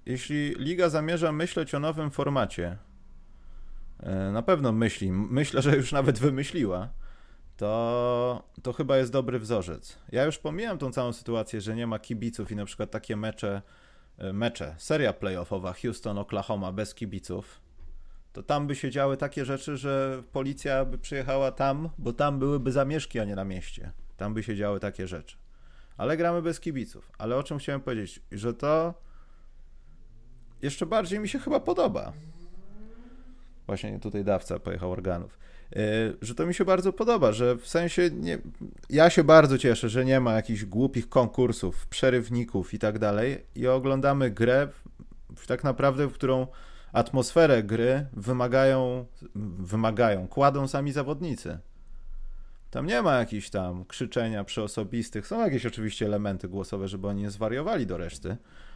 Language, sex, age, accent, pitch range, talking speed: Polish, male, 30-49, native, 100-140 Hz, 150 wpm